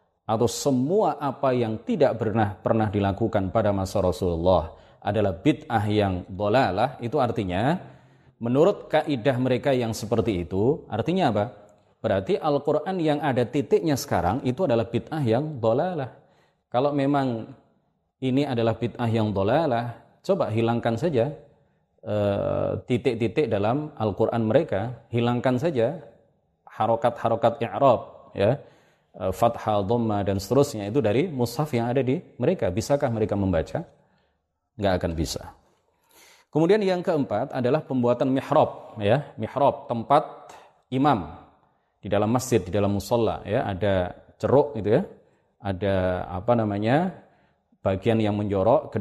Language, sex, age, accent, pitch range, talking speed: Indonesian, male, 30-49, native, 100-130 Hz, 125 wpm